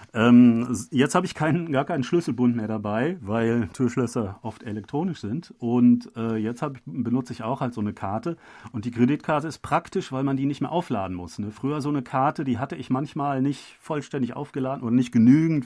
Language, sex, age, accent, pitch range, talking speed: German, male, 40-59, German, 115-145 Hz, 200 wpm